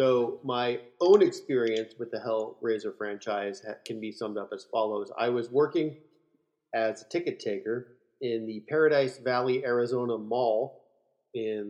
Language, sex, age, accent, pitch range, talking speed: English, male, 30-49, American, 110-160 Hz, 145 wpm